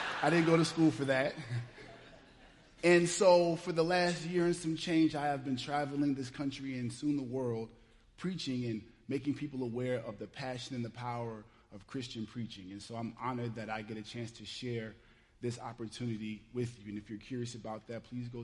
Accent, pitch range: American, 110-135 Hz